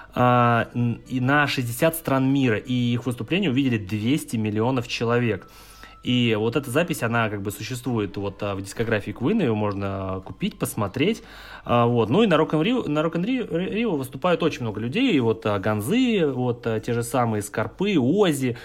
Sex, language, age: male, Russian, 30-49